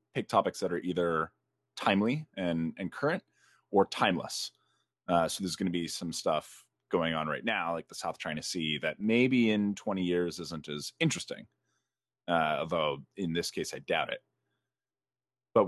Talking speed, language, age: 170 wpm, English, 30-49